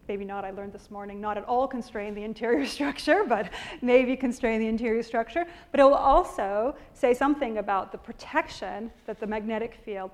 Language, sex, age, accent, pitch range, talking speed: English, female, 30-49, American, 215-285 Hz, 190 wpm